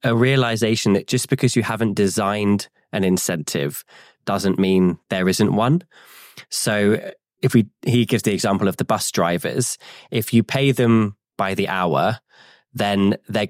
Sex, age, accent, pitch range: male, 20-39, British, 95-120 Hz